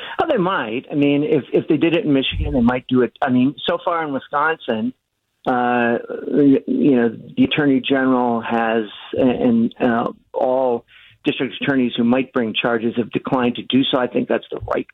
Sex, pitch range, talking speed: male, 120-160 Hz, 195 wpm